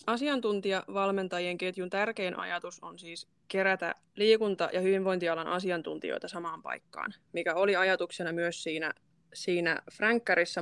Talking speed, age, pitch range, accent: 115 wpm, 20-39, 170-195 Hz, native